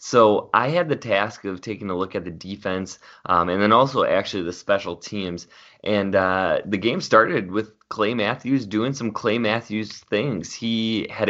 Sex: male